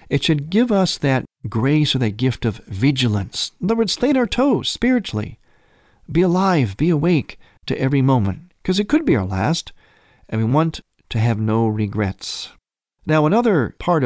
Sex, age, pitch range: male, 50-69, 115-165 Hz